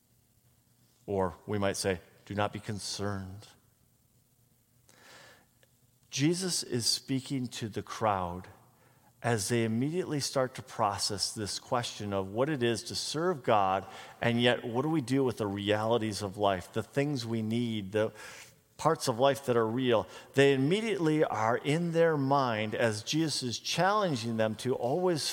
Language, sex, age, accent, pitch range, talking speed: English, male, 50-69, American, 110-135 Hz, 150 wpm